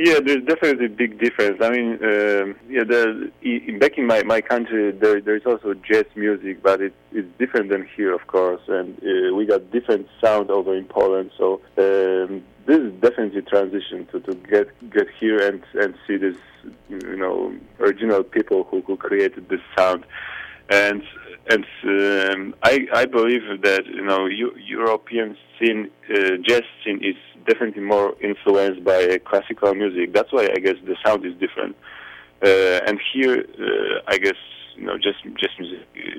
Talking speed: 170 wpm